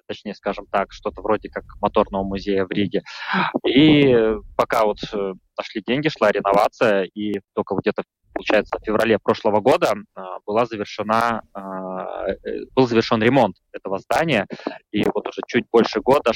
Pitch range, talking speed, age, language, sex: 105-125 Hz, 145 wpm, 20-39, Russian, male